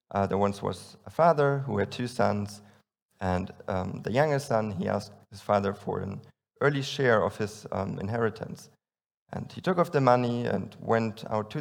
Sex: male